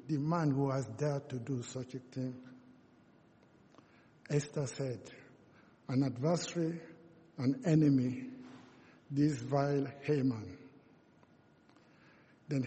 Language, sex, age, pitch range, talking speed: English, male, 60-79, 135-165 Hz, 95 wpm